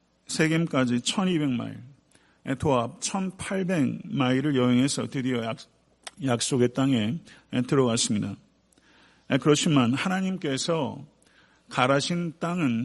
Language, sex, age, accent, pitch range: Korean, male, 50-69, native, 125-150 Hz